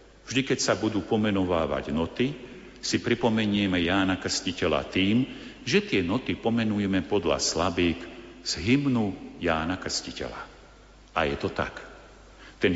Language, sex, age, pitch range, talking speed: Slovak, male, 50-69, 85-115 Hz, 120 wpm